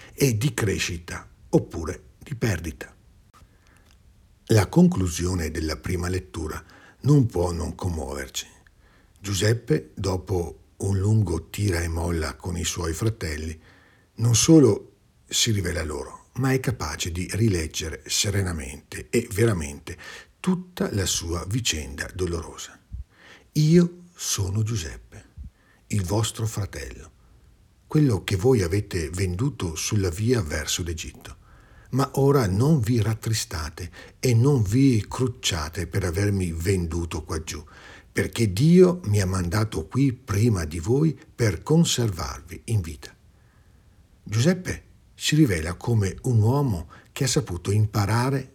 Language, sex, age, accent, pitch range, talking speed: Italian, male, 60-79, native, 85-115 Hz, 115 wpm